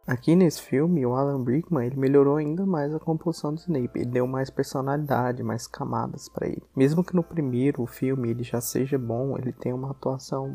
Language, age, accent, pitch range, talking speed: Portuguese, 20-39, Brazilian, 130-155 Hz, 200 wpm